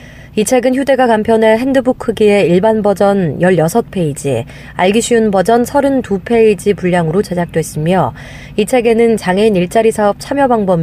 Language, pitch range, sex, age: Korean, 180-225 Hz, female, 30-49